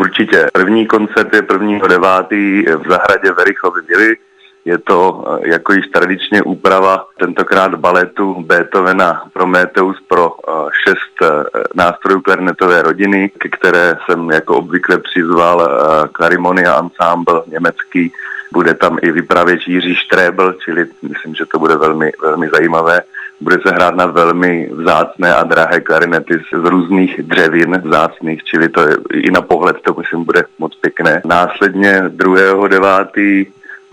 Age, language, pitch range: 30-49, Czech, 90-100 Hz